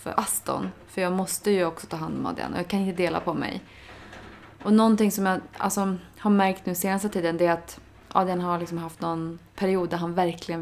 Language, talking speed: Swedish, 220 wpm